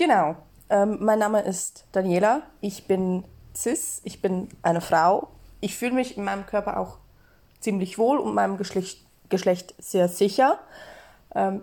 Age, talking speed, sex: 20-39, 150 wpm, female